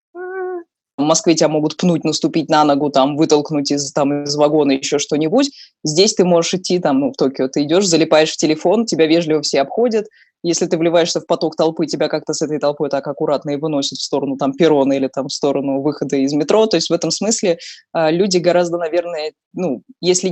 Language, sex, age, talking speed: Russian, female, 20-39, 205 wpm